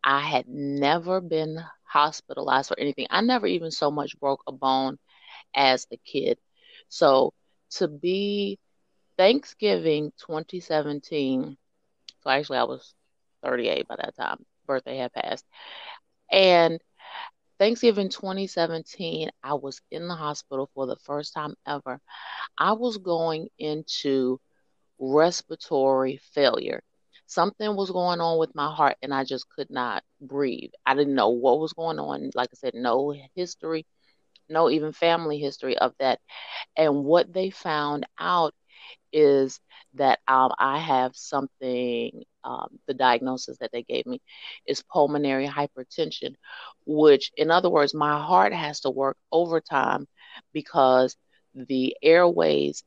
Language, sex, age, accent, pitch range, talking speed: English, female, 30-49, American, 135-175 Hz, 135 wpm